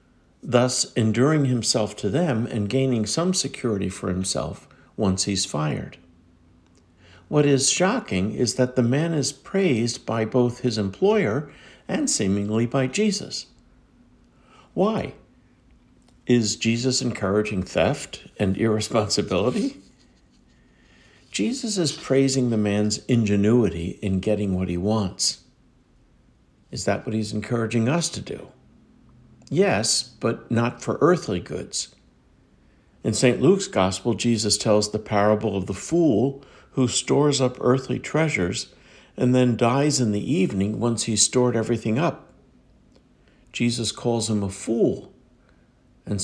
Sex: male